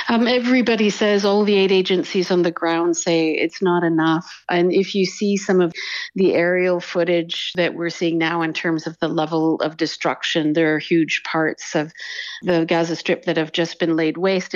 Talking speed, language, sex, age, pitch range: 200 wpm, English, female, 50-69, 160-190 Hz